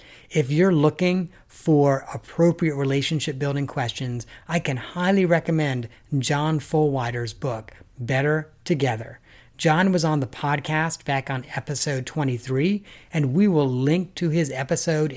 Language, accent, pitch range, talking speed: English, American, 130-160 Hz, 130 wpm